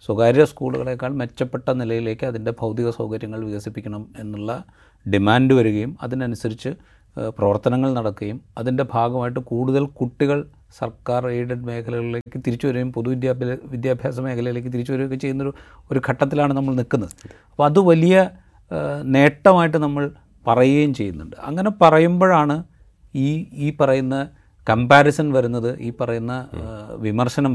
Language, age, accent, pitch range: Malayalam, 30-49, native, 115-145 Hz